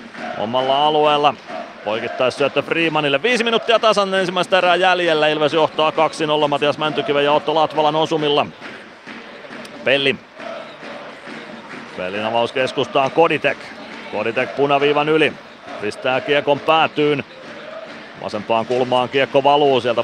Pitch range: 135-150 Hz